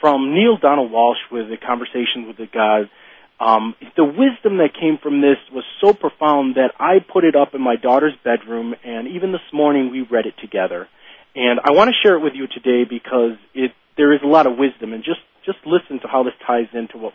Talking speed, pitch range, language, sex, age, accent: 225 wpm, 120-165 Hz, English, male, 40-59, American